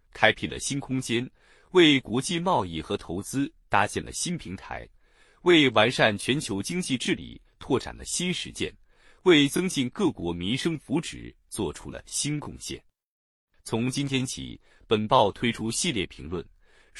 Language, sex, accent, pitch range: Chinese, male, native, 100-160 Hz